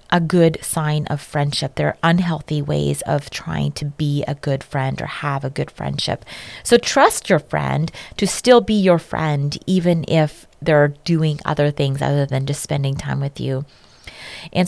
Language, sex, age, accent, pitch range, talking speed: English, female, 30-49, American, 150-205 Hz, 180 wpm